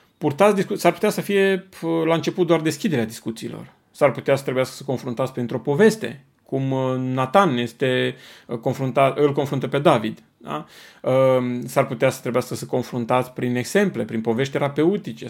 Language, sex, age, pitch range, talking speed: Romanian, male, 30-49, 130-170 Hz, 155 wpm